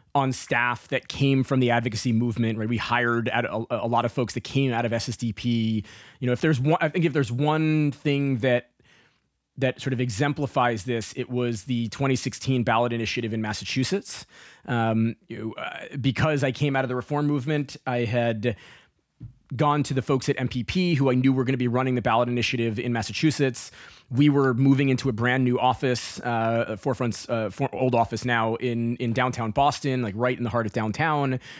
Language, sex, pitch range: English, male, 115-135 Hz